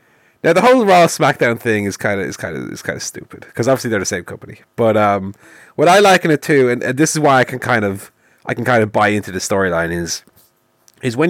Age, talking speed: 30-49, 265 wpm